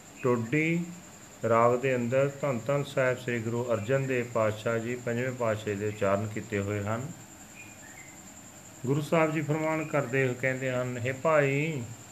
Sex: male